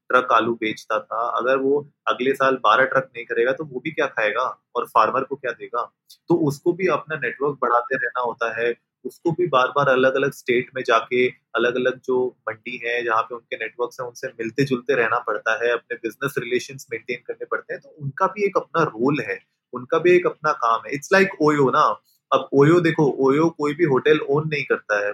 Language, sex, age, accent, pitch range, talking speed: Hindi, male, 20-39, native, 125-175 Hz, 215 wpm